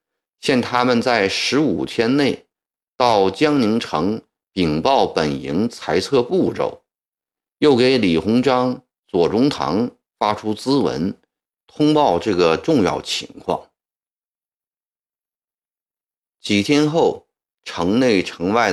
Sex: male